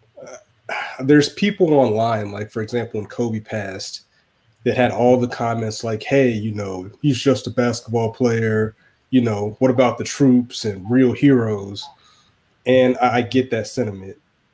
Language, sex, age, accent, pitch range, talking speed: English, male, 30-49, American, 110-125 Hz, 155 wpm